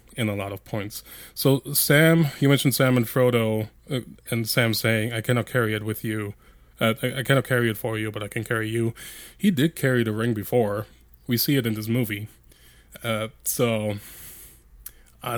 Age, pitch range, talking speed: 20-39, 110-130 Hz, 195 wpm